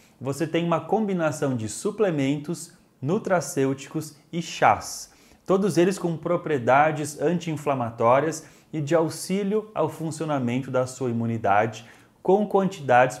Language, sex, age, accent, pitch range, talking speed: Portuguese, male, 20-39, Brazilian, 125-165 Hz, 110 wpm